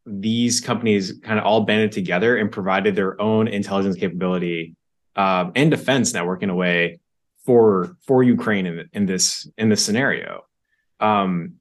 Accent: American